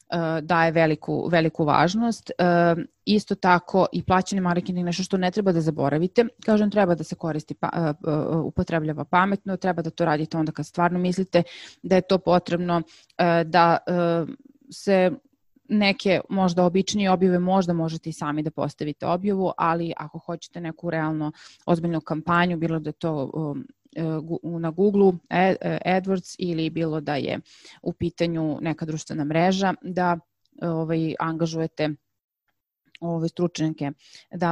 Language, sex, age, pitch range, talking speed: English, female, 30-49, 160-185 Hz, 130 wpm